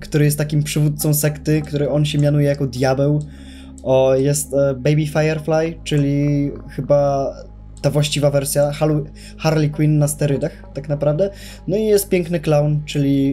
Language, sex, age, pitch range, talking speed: Polish, male, 20-39, 135-160 Hz, 155 wpm